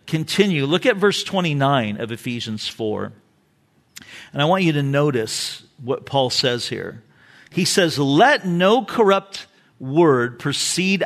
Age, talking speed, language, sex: 50-69, 135 wpm, English, male